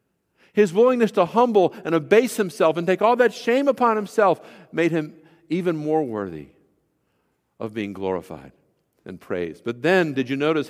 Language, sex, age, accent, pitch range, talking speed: English, male, 50-69, American, 100-160 Hz, 165 wpm